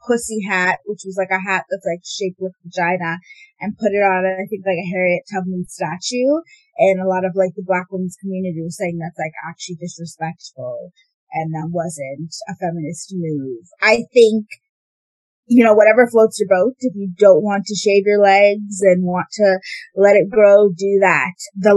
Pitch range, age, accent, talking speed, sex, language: 185-235 Hz, 20-39, American, 190 wpm, female, English